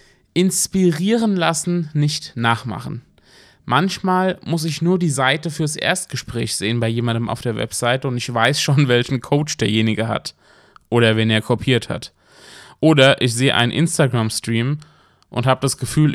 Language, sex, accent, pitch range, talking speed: German, male, German, 120-160 Hz, 150 wpm